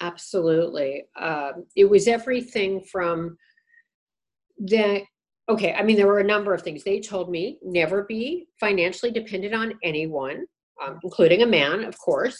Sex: female